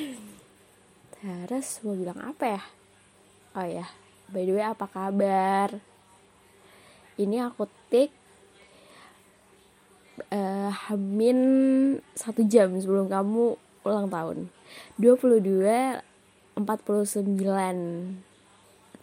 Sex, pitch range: female, 185-220 Hz